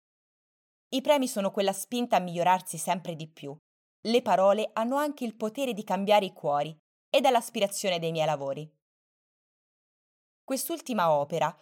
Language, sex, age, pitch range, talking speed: Italian, female, 20-39, 165-240 Hz, 145 wpm